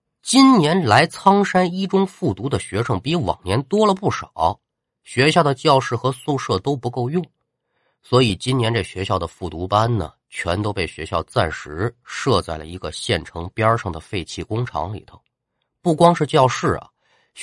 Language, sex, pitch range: Chinese, male, 90-135 Hz